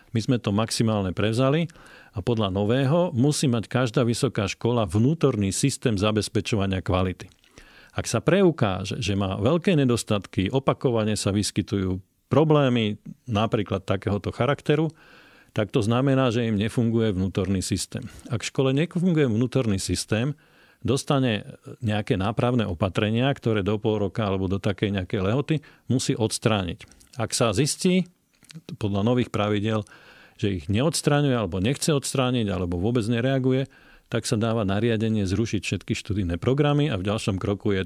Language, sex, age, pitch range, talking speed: Slovak, male, 40-59, 100-135 Hz, 140 wpm